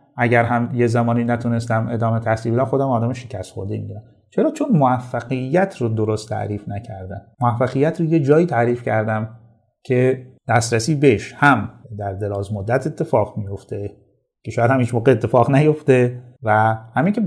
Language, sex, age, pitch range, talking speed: Persian, male, 30-49, 110-140 Hz, 145 wpm